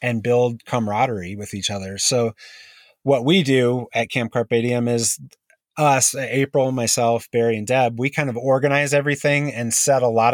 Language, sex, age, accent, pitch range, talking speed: English, male, 30-49, American, 115-135 Hz, 170 wpm